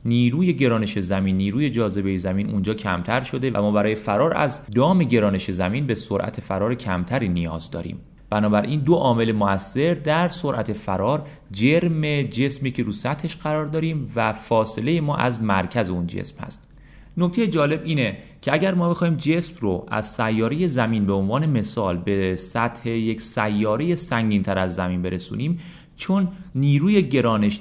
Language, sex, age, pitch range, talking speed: Persian, male, 30-49, 100-145 Hz, 155 wpm